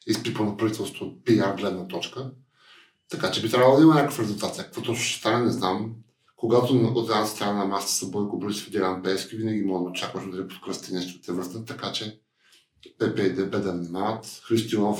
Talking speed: 200 wpm